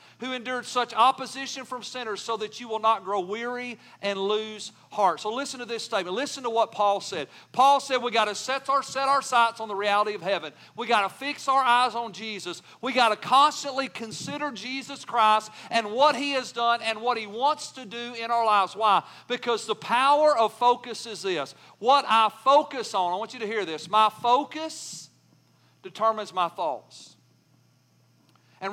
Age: 50-69